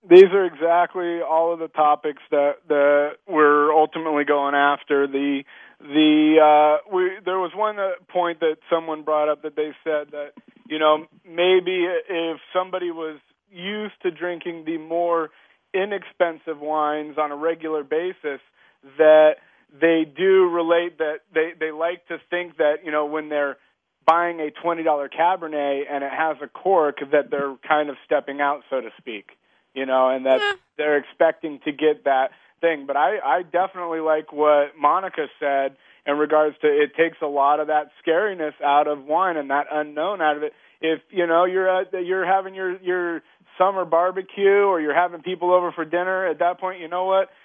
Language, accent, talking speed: English, American, 180 wpm